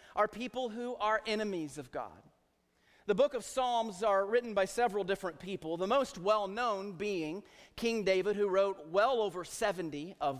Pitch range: 165-220 Hz